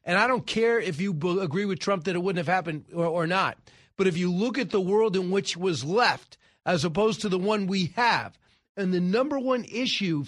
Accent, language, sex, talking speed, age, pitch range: American, English, male, 235 wpm, 40-59, 160-205 Hz